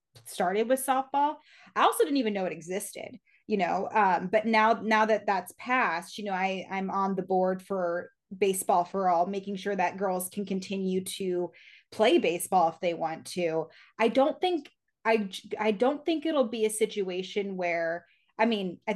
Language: English